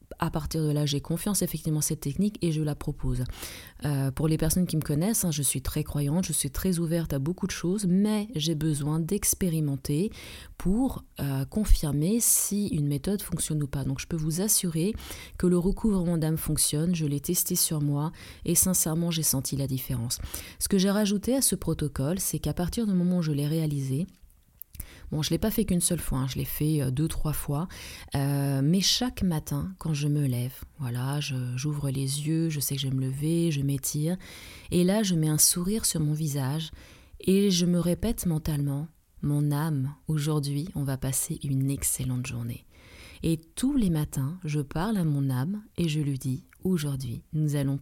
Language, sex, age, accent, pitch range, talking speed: French, female, 20-39, French, 140-175 Hz, 200 wpm